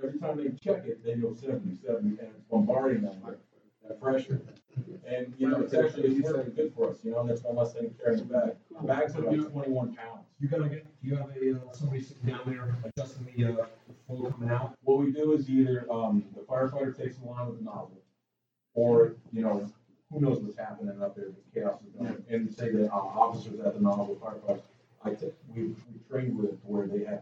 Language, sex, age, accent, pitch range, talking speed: English, male, 40-59, American, 115-145 Hz, 225 wpm